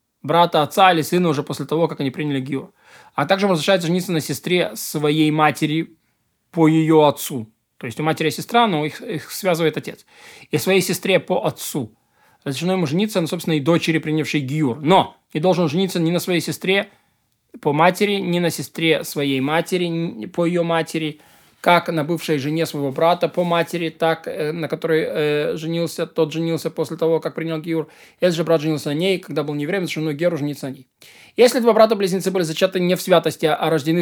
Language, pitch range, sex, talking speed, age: Russian, 155-185 Hz, male, 200 wpm, 20-39